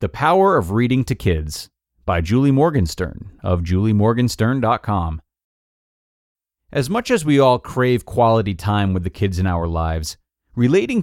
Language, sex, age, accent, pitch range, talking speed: English, male, 30-49, American, 100-140 Hz, 140 wpm